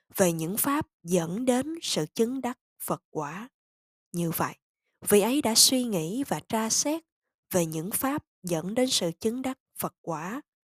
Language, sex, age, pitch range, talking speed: Vietnamese, female, 10-29, 180-260 Hz, 170 wpm